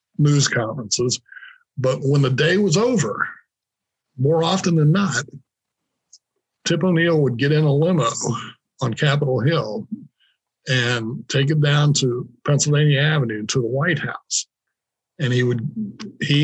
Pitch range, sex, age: 125-160 Hz, male, 60-79